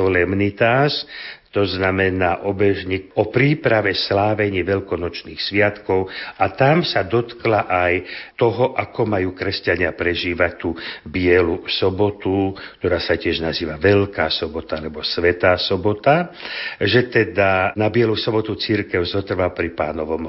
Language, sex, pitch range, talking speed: Slovak, male, 90-115 Hz, 115 wpm